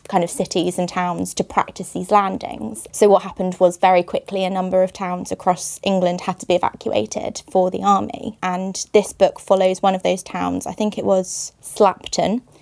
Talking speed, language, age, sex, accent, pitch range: 195 wpm, English, 20-39, female, British, 180-200 Hz